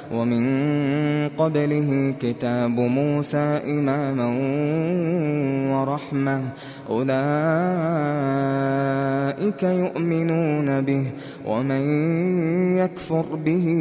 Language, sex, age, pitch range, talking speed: Arabic, male, 20-39, 135-180 Hz, 50 wpm